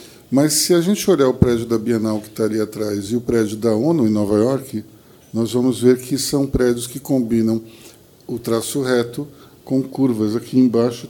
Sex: male